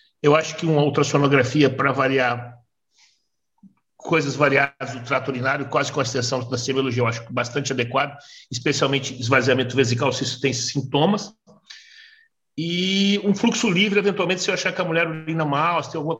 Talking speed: 165 wpm